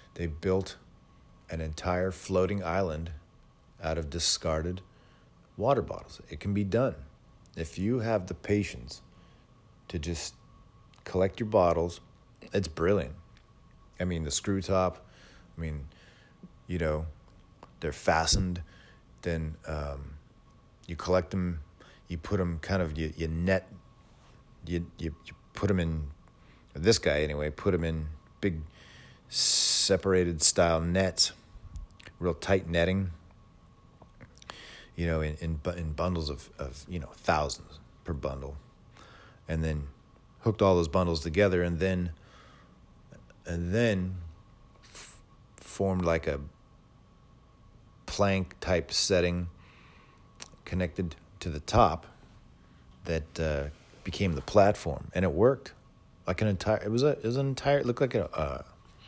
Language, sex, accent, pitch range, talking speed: English, male, American, 80-100 Hz, 130 wpm